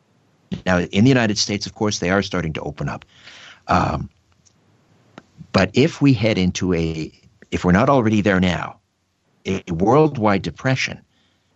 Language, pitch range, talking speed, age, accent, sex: English, 95-130 Hz, 150 wpm, 60-79, American, male